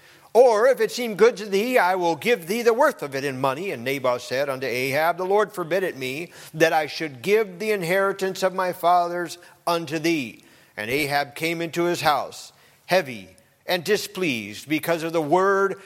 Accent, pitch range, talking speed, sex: American, 130-170 Hz, 195 wpm, male